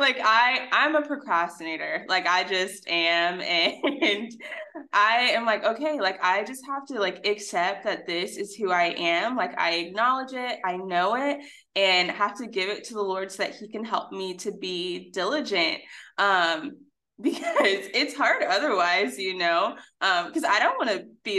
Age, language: 20-39, English